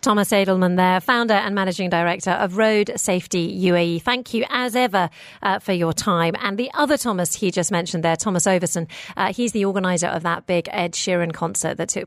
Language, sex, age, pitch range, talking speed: English, female, 40-59, 175-230 Hz, 205 wpm